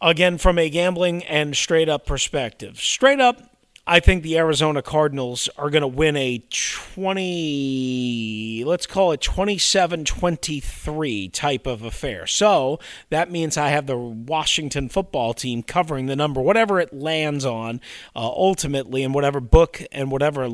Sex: male